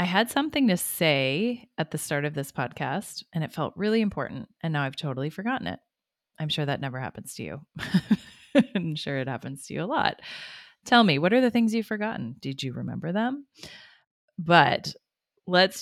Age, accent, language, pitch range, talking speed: 30-49, American, English, 140-185 Hz, 195 wpm